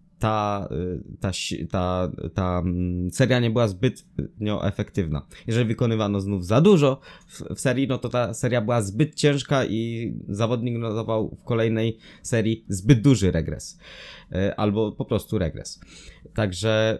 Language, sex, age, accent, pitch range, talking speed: Polish, male, 20-39, native, 95-115 Hz, 135 wpm